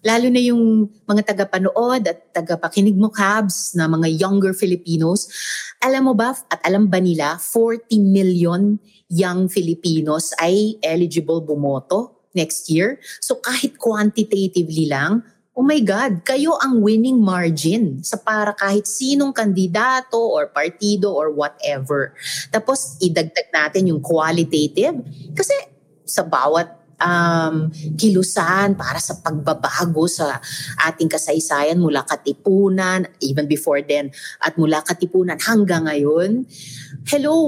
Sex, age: female, 30-49